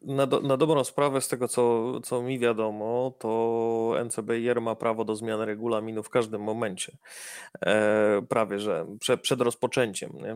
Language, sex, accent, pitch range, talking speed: Polish, male, native, 110-130 Hz, 160 wpm